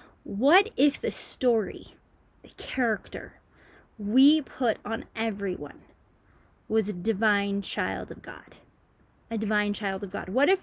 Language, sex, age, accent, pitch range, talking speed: English, female, 20-39, American, 205-275 Hz, 130 wpm